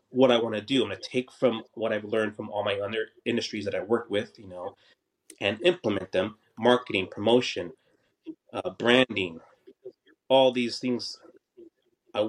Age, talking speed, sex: 30-49, 170 wpm, male